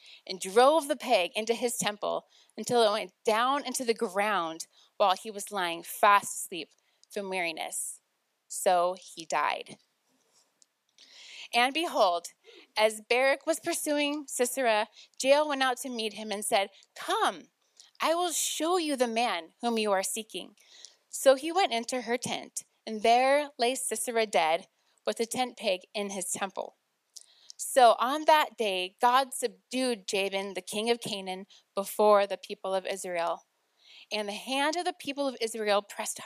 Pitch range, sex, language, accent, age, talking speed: 195-255 Hz, female, English, American, 20-39, 155 wpm